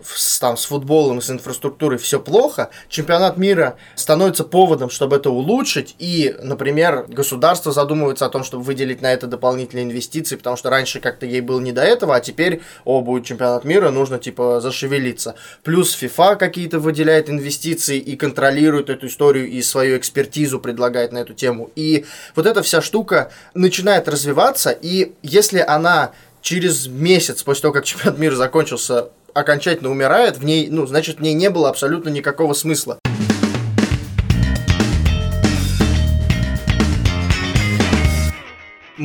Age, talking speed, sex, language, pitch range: 20-39, 145 wpm, male, Russian, 125-160 Hz